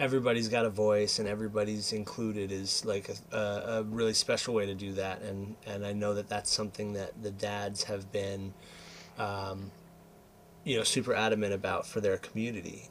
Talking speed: 175 wpm